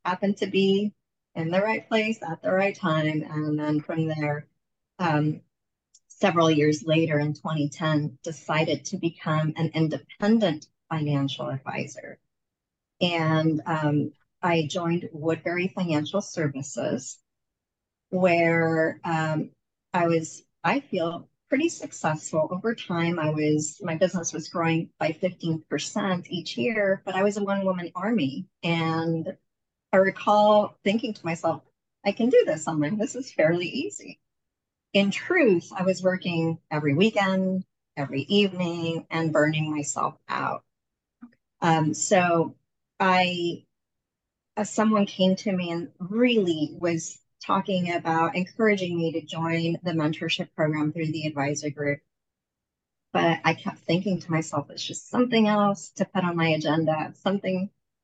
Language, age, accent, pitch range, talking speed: English, 40-59, American, 155-190 Hz, 135 wpm